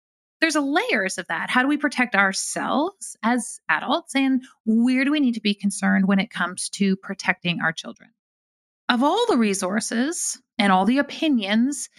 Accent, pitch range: American, 190-230 Hz